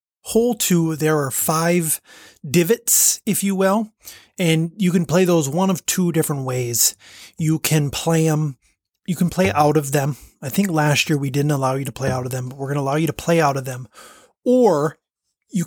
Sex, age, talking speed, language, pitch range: male, 30-49, 210 wpm, English, 145-185 Hz